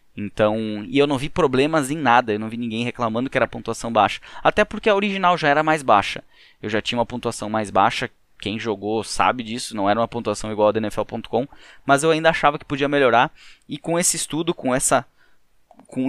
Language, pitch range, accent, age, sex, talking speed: Portuguese, 110-145 Hz, Brazilian, 20-39, male, 215 wpm